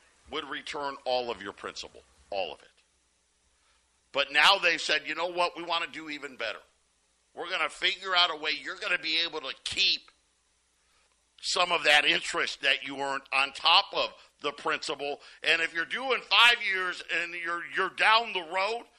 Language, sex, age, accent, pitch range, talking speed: English, male, 50-69, American, 145-200 Hz, 185 wpm